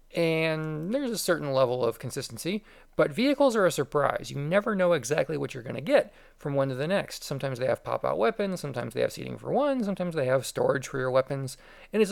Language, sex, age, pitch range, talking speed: English, male, 40-59, 135-195 Hz, 230 wpm